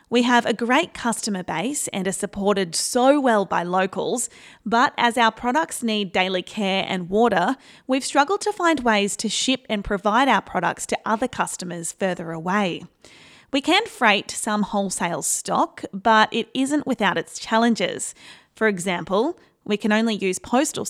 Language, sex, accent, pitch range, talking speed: English, female, Australian, 195-240 Hz, 165 wpm